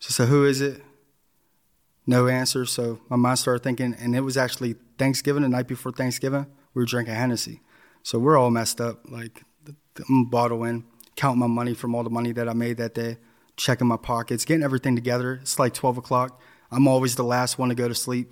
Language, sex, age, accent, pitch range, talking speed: English, male, 20-39, American, 115-130 Hz, 210 wpm